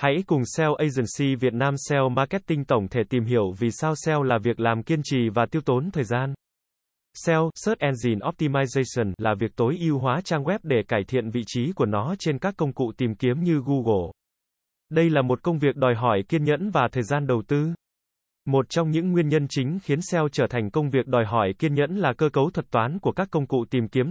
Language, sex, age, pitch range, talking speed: Vietnamese, male, 20-39, 120-160 Hz, 230 wpm